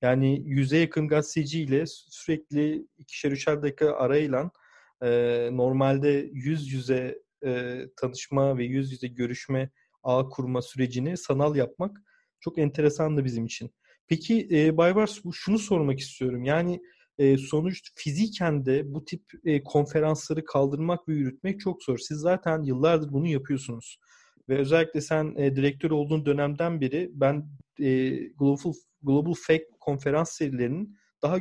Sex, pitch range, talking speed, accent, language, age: male, 135-170 Hz, 135 wpm, native, Turkish, 40-59